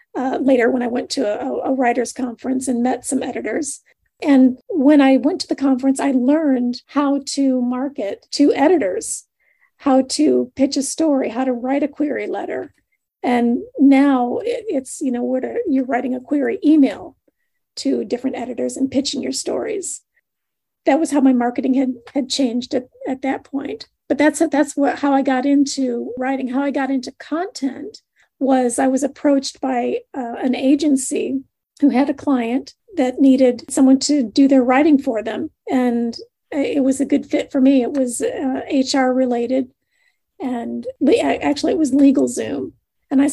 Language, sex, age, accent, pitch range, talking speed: English, female, 40-59, American, 255-285 Hz, 175 wpm